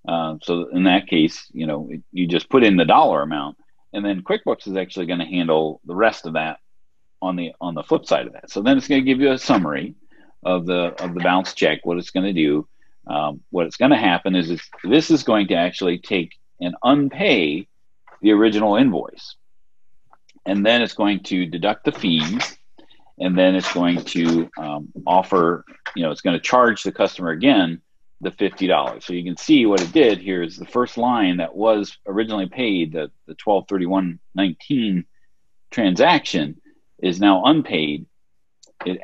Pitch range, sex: 85-110 Hz, male